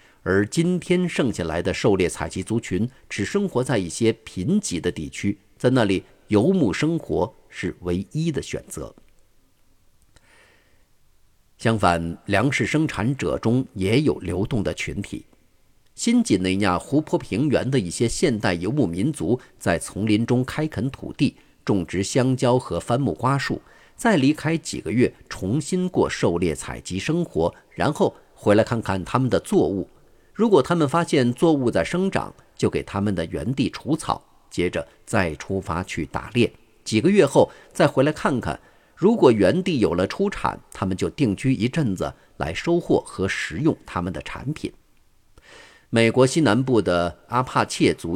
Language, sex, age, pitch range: Chinese, male, 50-69, 95-150 Hz